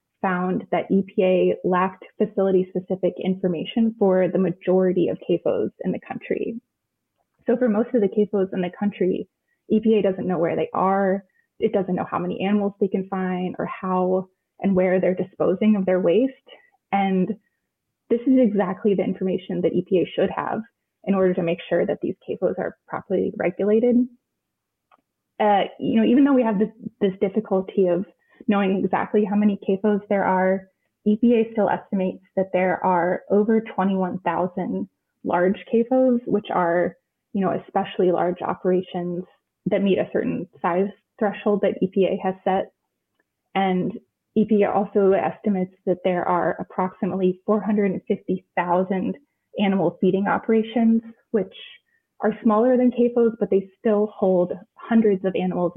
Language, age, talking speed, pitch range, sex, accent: English, 20-39, 145 wpm, 185-215 Hz, female, American